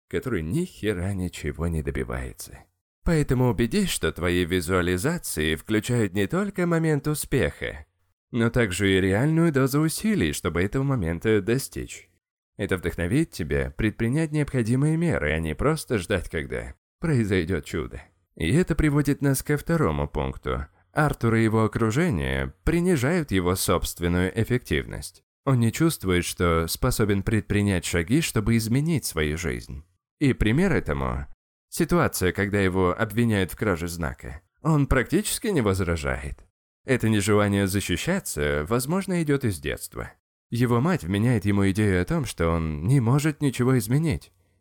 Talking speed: 135 wpm